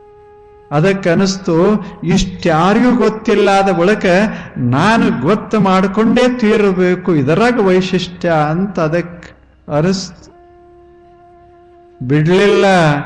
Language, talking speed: Kannada, 65 wpm